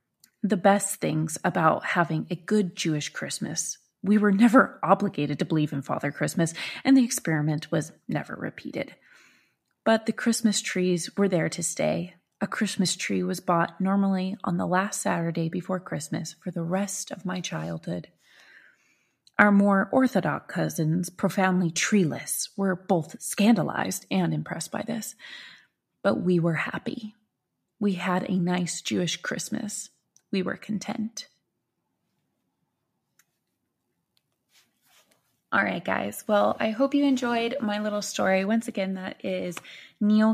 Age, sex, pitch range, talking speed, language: 30-49, female, 175-215 Hz, 135 wpm, English